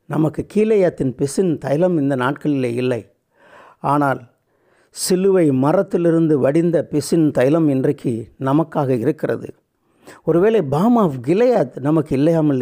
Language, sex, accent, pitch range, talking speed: Tamil, male, native, 160-190 Hz, 105 wpm